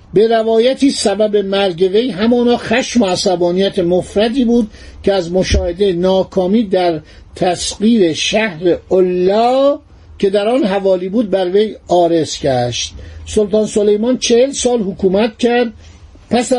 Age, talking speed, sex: 50-69, 120 wpm, male